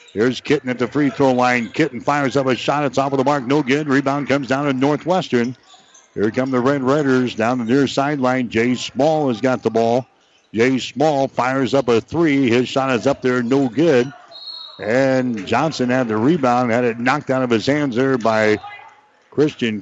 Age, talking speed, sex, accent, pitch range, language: 60-79, 205 wpm, male, American, 120-140 Hz, English